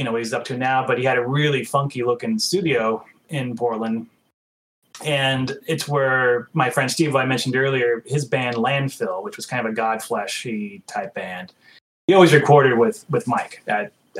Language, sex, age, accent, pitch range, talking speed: English, male, 30-49, American, 125-155 Hz, 190 wpm